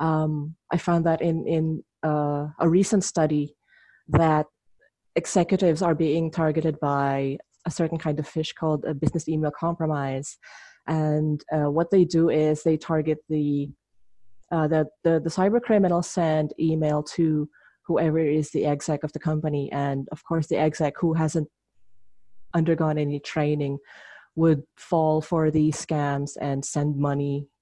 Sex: female